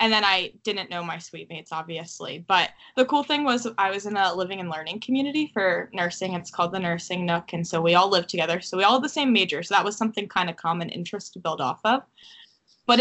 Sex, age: female, 10-29